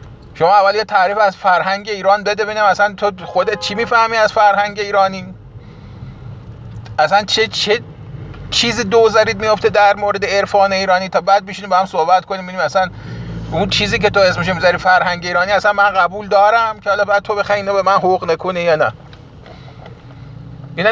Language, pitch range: Persian, 165-215 Hz